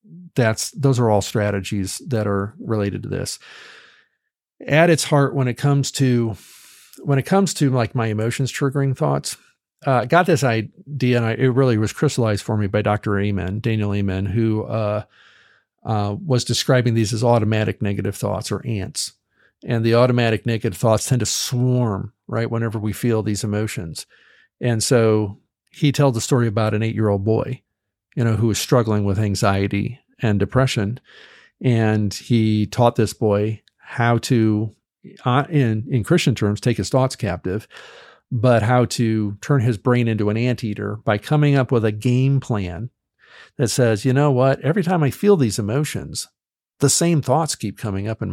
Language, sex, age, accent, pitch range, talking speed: English, male, 50-69, American, 105-130 Hz, 175 wpm